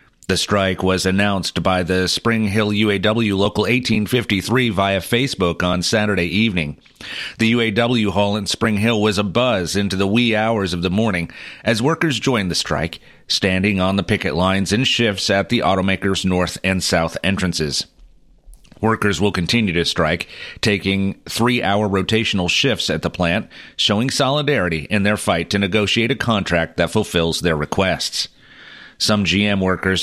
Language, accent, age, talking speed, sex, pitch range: English, American, 40-59, 160 wpm, male, 95-115 Hz